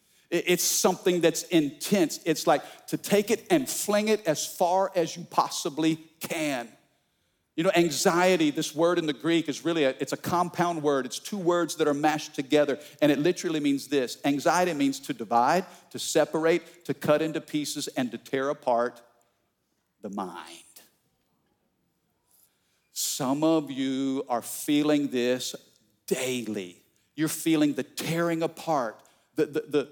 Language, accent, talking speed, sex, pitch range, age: English, American, 150 wpm, male, 135-175 Hz, 50-69